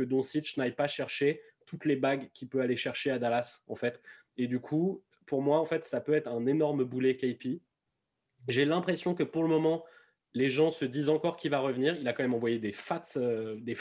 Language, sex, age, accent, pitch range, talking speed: French, male, 20-39, French, 120-145 Hz, 235 wpm